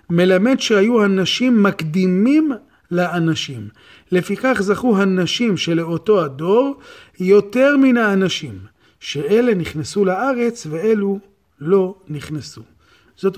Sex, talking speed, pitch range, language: male, 90 wpm, 155-200 Hz, Hebrew